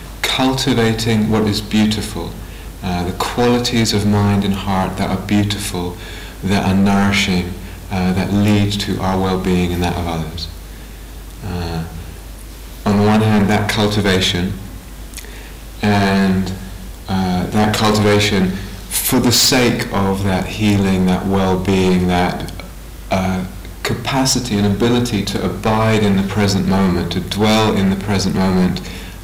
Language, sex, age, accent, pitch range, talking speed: English, male, 30-49, British, 90-110 Hz, 130 wpm